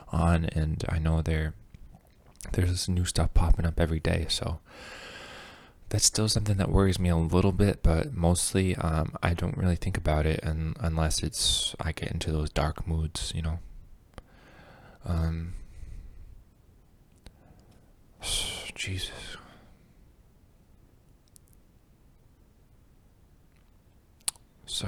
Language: English